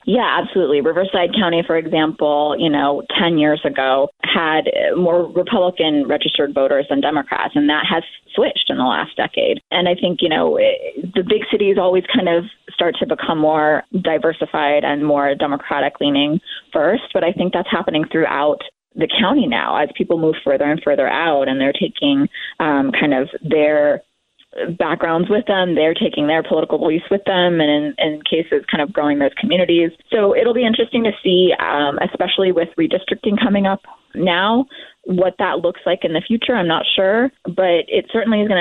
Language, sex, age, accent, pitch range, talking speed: English, female, 20-39, American, 155-240 Hz, 180 wpm